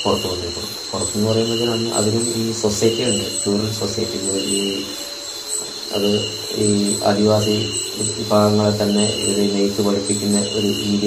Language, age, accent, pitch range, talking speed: Malayalam, 20-39, native, 95-110 Hz, 115 wpm